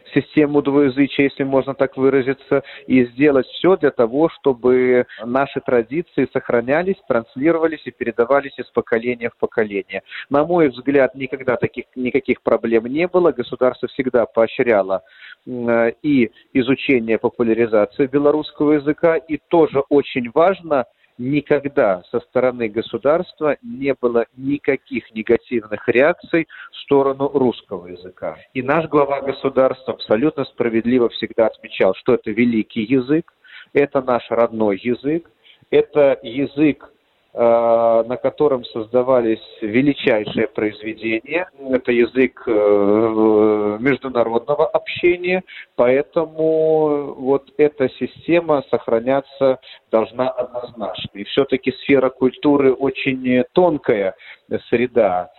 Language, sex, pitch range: Russian, male, 120-145 Hz